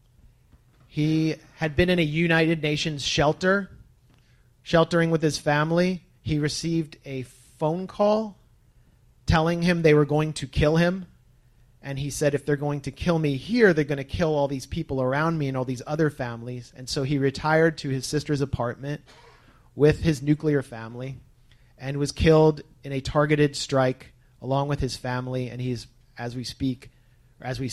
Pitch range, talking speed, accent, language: 125-150 Hz, 175 wpm, American, English